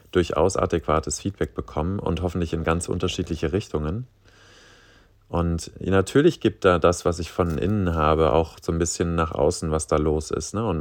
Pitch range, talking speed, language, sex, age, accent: 80-100 Hz, 170 wpm, German, male, 30-49, German